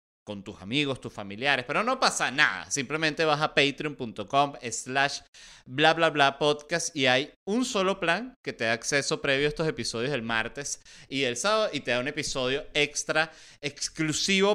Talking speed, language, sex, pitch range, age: 175 wpm, Spanish, male, 125-165 Hz, 30-49